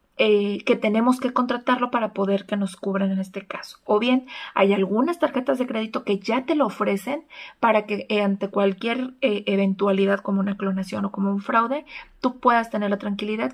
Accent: Mexican